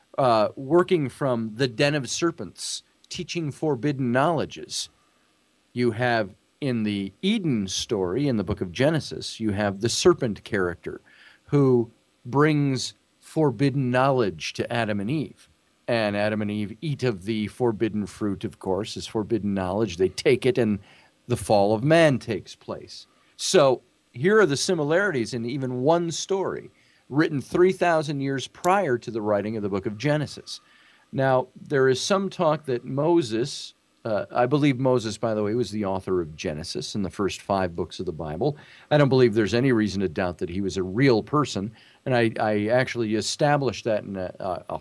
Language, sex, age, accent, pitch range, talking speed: English, male, 40-59, American, 105-140 Hz, 175 wpm